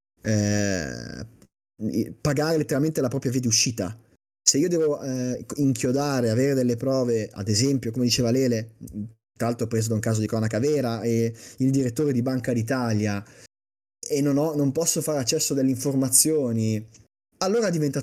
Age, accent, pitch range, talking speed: 30-49, native, 115-140 Hz, 165 wpm